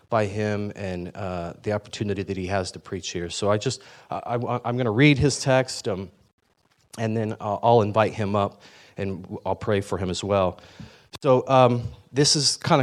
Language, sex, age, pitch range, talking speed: English, male, 30-49, 105-130 Hz, 185 wpm